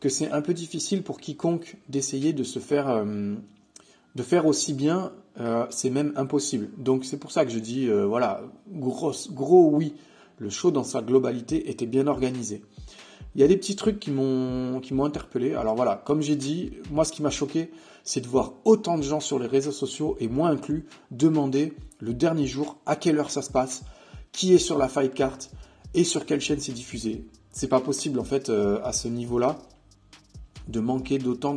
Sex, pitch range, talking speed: male, 125-160 Hz, 205 wpm